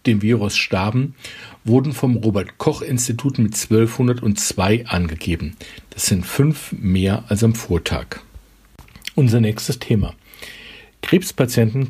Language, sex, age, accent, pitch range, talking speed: German, male, 50-69, German, 105-130 Hz, 100 wpm